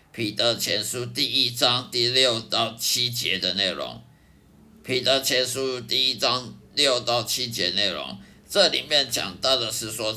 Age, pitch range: 50-69, 115-155 Hz